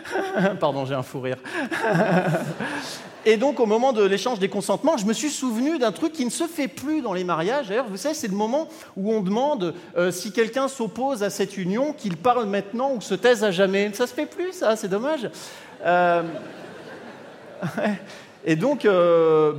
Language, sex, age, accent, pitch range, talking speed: French, male, 40-59, French, 160-250 Hz, 195 wpm